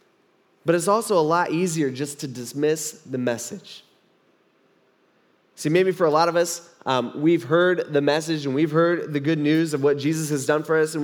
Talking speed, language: 200 wpm, English